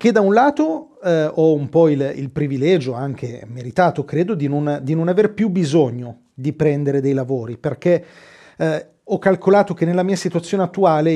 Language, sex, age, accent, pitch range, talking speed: Italian, male, 40-59, native, 140-205 Hz, 175 wpm